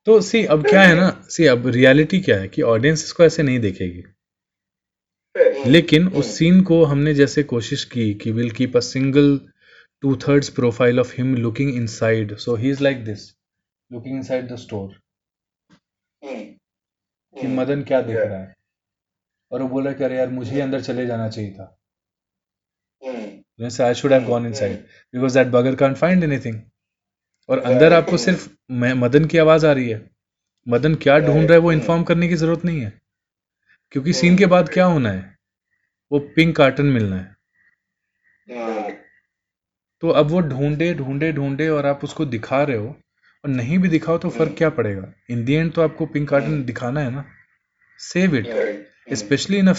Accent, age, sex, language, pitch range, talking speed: Indian, 20-39, male, English, 120-160 Hz, 145 wpm